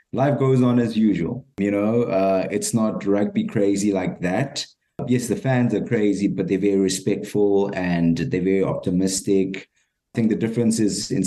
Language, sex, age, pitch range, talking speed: English, male, 20-39, 90-105 Hz, 175 wpm